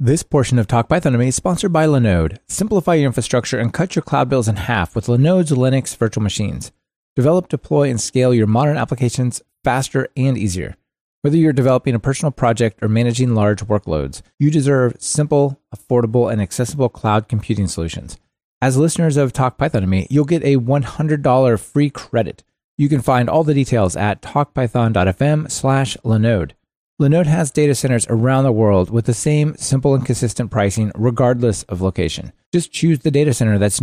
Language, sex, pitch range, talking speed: English, male, 115-145 Hz, 170 wpm